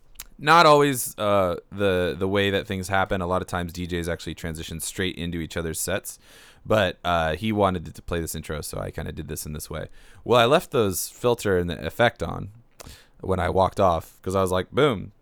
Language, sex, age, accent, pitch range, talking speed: English, male, 20-39, American, 80-100 Hz, 220 wpm